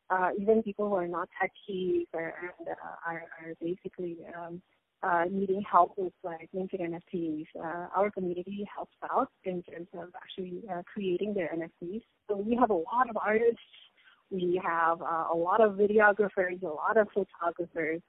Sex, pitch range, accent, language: female, 170-195 Hz, American, English